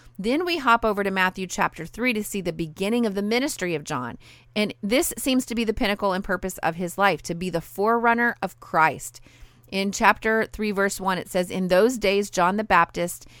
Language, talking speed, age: English, 215 wpm, 30-49